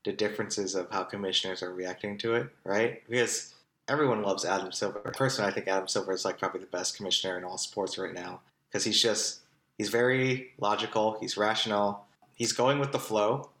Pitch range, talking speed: 105-125 Hz, 195 wpm